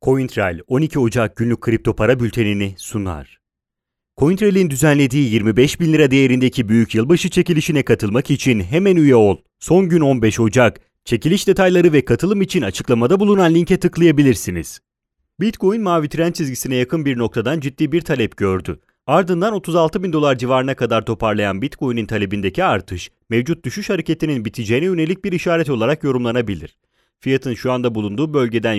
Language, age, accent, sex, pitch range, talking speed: Italian, 30-49, Turkish, male, 110-160 Hz, 145 wpm